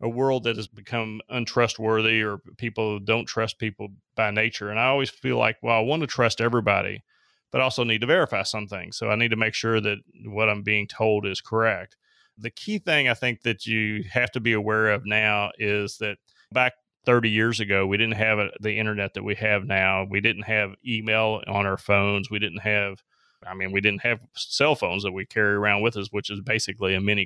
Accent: American